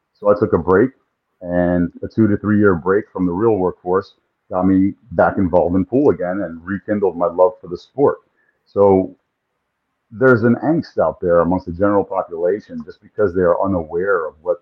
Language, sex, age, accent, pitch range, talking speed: English, male, 50-69, American, 90-110 Hz, 195 wpm